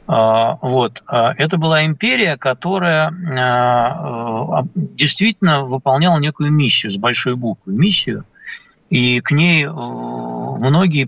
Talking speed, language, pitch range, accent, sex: 90 wpm, Russian, 120-170 Hz, native, male